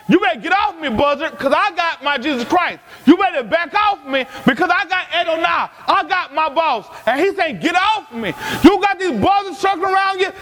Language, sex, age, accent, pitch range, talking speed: English, male, 30-49, American, 335-420 Hz, 225 wpm